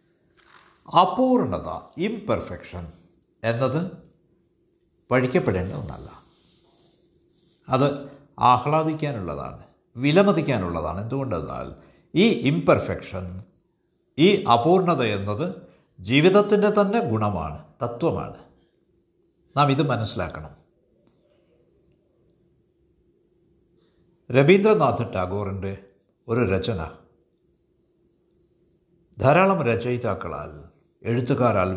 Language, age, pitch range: Malayalam, 60-79, 115-175 Hz